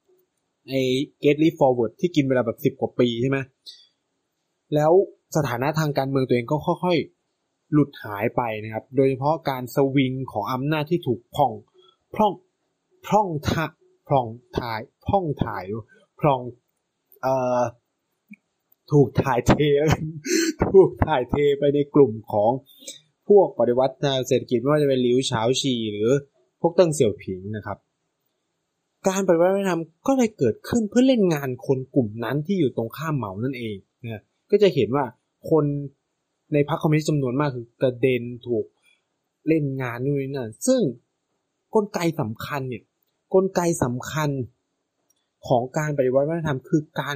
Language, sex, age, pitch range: Thai, male, 20-39, 125-165 Hz